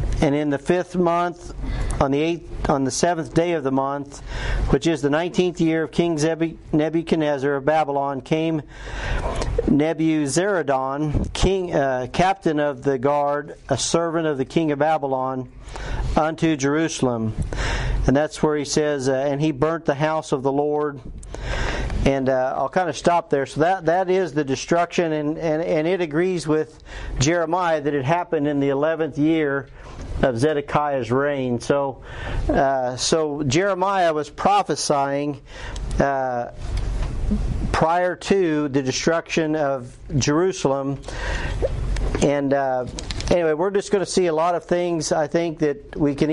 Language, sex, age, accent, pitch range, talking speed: English, male, 50-69, American, 140-170 Hz, 150 wpm